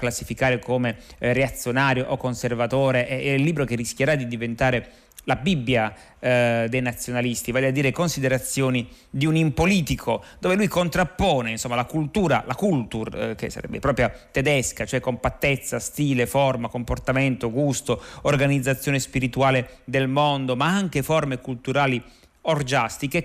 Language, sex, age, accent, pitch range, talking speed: Italian, male, 30-49, native, 120-140 Hz, 140 wpm